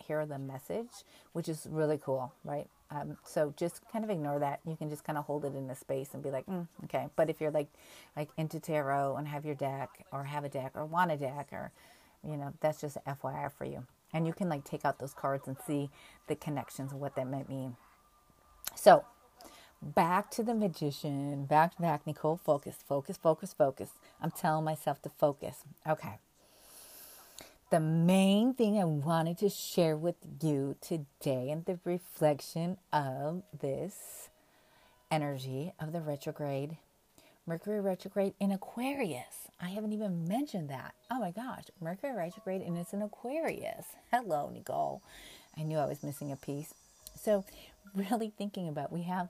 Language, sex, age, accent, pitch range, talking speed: English, female, 40-59, American, 145-185 Hz, 175 wpm